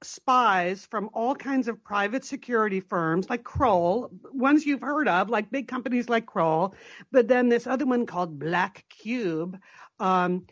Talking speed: 160 wpm